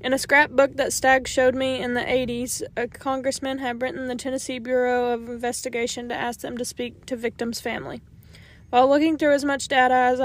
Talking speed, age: 200 wpm, 20-39